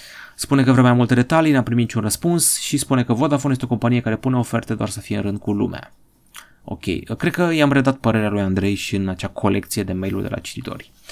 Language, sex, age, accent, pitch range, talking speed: Romanian, male, 30-49, native, 105-135 Hz, 235 wpm